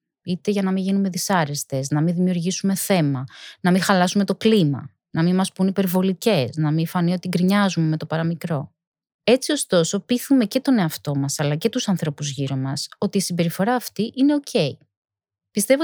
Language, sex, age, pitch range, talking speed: Greek, female, 20-39, 155-205 Hz, 180 wpm